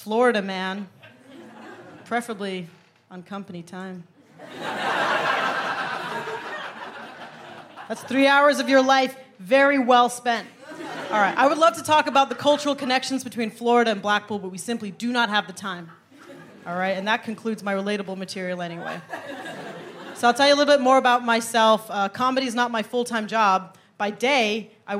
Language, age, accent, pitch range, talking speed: English, 30-49, American, 200-265 Hz, 155 wpm